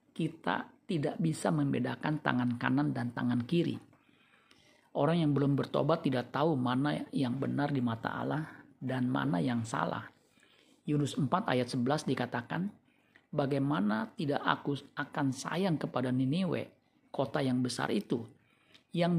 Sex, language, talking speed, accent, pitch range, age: male, Indonesian, 130 wpm, native, 135-170 Hz, 50-69